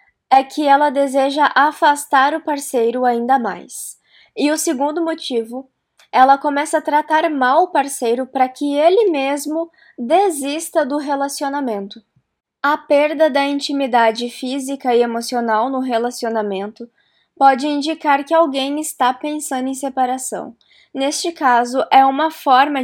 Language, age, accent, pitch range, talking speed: Portuguese, 20-39, Brazilian, 250-300 Hz, 130 wpm